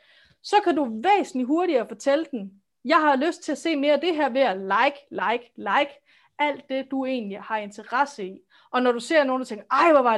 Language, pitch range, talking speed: English, 225-280 Hz, 230 wpm